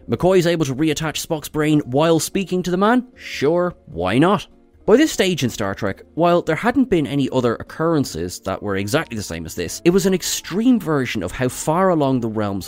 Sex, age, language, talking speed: male, 20-39, English, 220 wpm